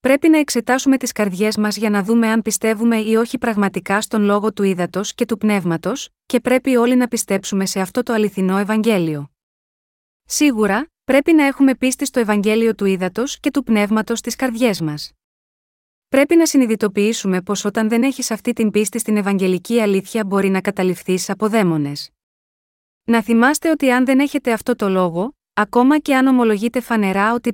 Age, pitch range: 30-49, 200-245 Hz